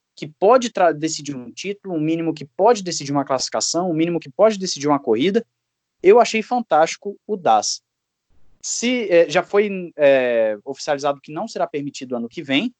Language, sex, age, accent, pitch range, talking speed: Portuguese, male, 20-39, Brazilian, 130-205 Hz, 180 wpm